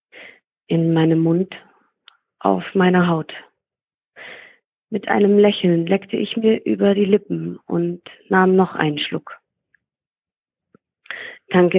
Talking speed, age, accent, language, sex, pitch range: 105 wpm, 40-59, German, German, female, 165-200 Hz